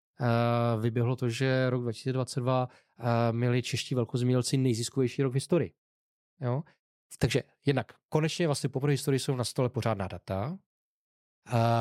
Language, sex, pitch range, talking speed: Czech, male, 120-135 Hz, 135 wpm